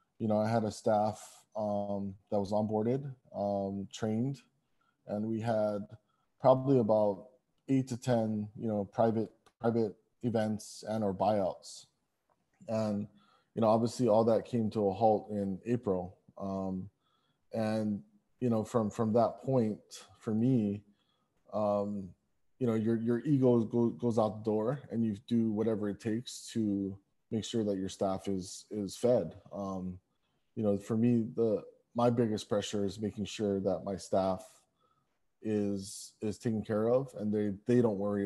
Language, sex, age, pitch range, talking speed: English, male, 20-39, 100-115 Hz, 155 wpm